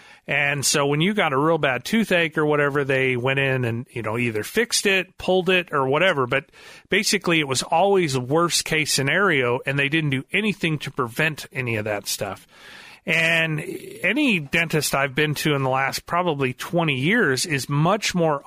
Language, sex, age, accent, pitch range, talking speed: English, male, 40-59, American, 135-170 Hz, 190 wpm